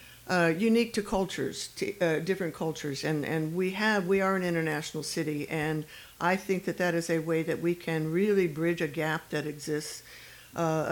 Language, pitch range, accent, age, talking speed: English, 155-180 Hz, American, 60-79, 190 wpm